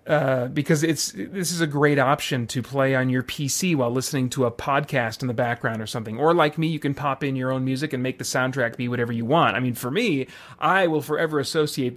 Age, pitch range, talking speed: 30-49, 135-175 Hz, 245 wpm